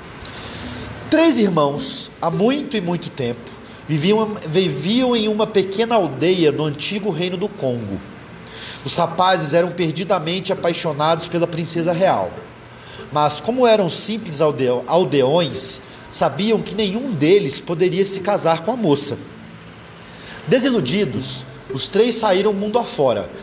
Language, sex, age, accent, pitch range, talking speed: Portuguese, male, 40-59, Brazilian, 150-210 Hz, 120 wpm